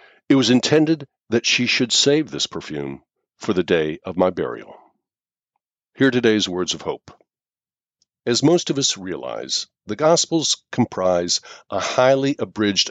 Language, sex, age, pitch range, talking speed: English, male, 60-79, 95-135 Hz, 145 wpm